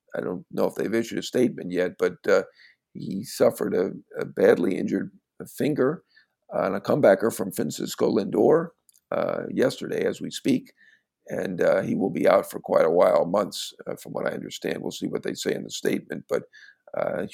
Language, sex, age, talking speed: English, male, 50-69, 190 wpm